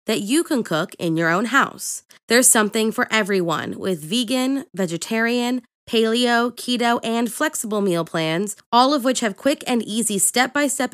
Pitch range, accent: 195-255 Hz, American